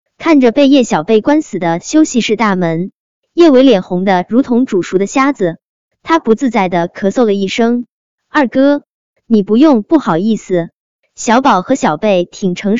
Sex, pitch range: male, 190-280 Hz